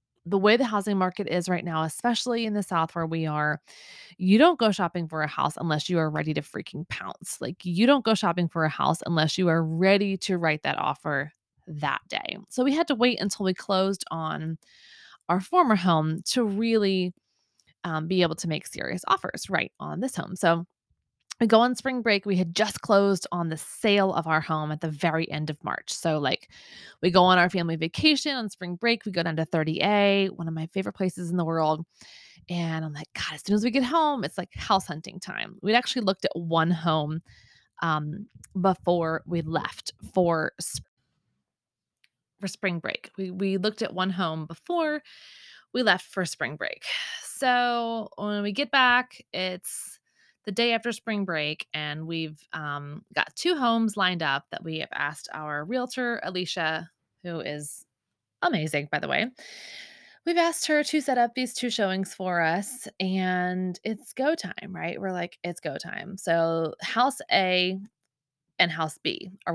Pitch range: 160-220 Hz